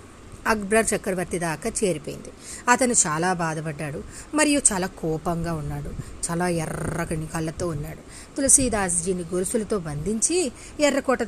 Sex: female